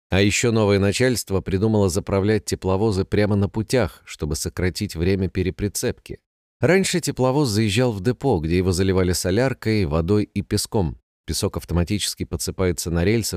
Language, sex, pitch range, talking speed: Russian, male, 90-120 Hz, 140 wpm